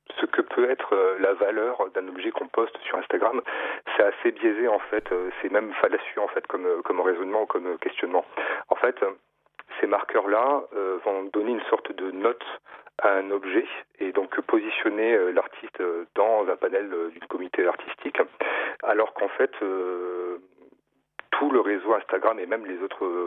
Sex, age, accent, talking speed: male, 40-59, French, 160 wpm